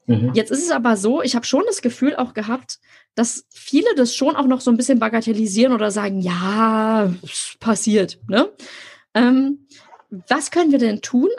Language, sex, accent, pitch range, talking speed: German, female, German, 210-255 Hz, 170 wpm